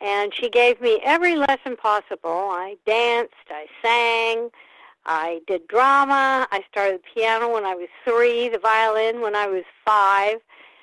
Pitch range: 205-275 Hz